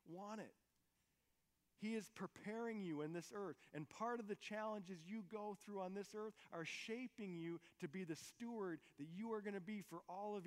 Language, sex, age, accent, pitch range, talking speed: English, male, 40-59, American, 145-205 Hz, 205 wpm